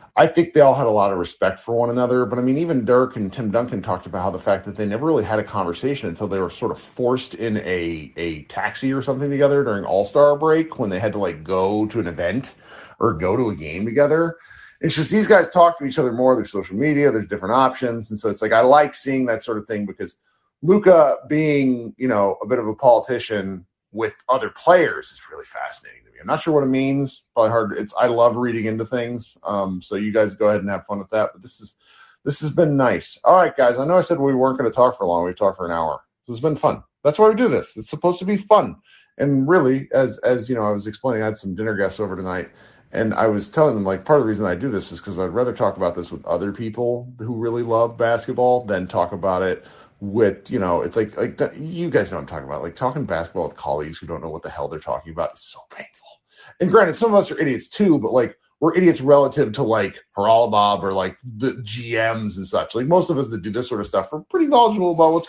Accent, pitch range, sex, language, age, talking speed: American, 105-145 Hz, male, English, 40-59, 265 wpm